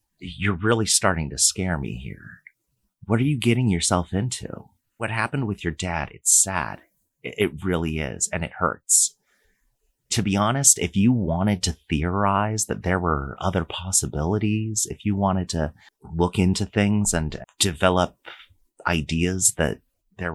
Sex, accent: male, American